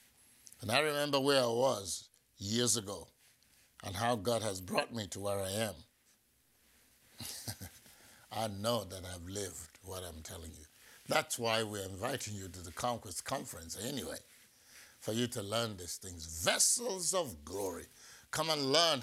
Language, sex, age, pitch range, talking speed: English, male, 60-79, 100-125 Hz, 155 wpm